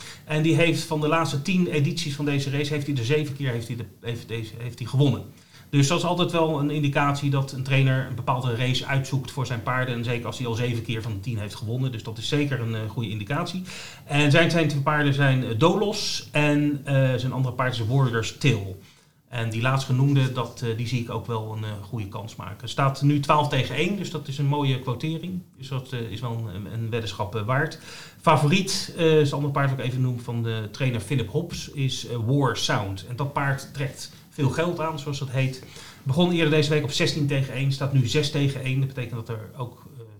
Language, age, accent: Dutch, 30-49, Dutch